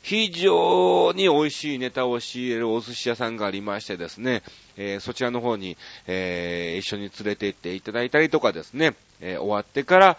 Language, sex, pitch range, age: Japanese, male, 100-170 Hz, 30-49